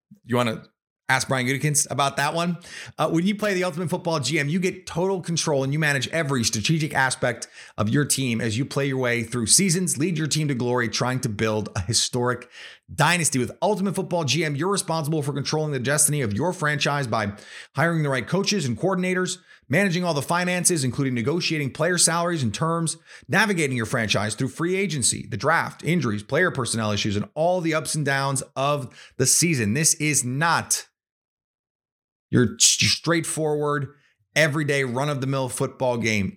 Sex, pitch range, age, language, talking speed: male, 125-165 Hz, 30-49, English, 185 wpm